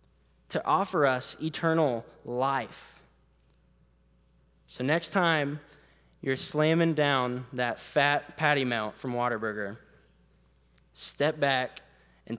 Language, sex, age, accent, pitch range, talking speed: English, male, 20-39, American, 115-165 Hz, 95 wpm